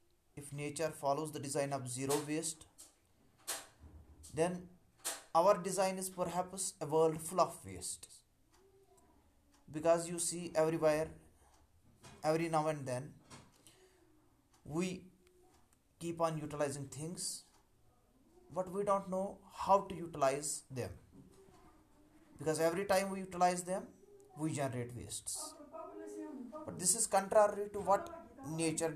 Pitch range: 130-180 Hz